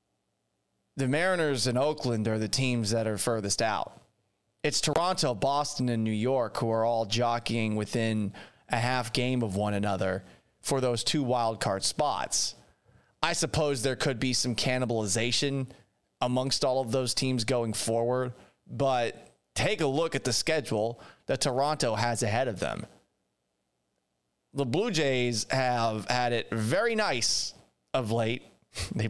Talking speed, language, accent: 150 wpm, English, American